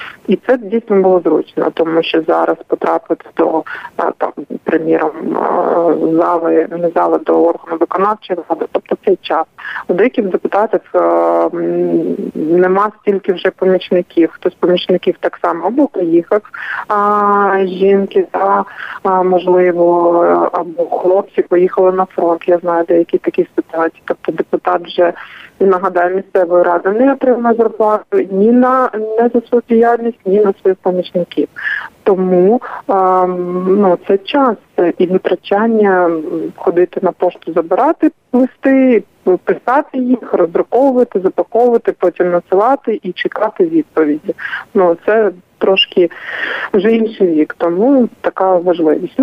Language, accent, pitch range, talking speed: Ukrainian, native, 175-230 Hz, 120 wpm